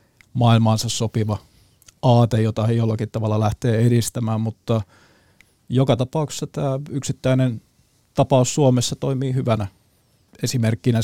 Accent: native